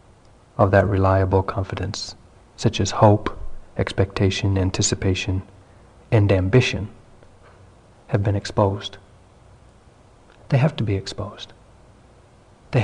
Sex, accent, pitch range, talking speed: male, American, 95-115 Hz, 95 wpm